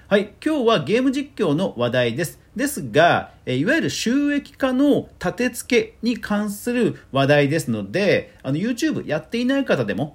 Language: Japanese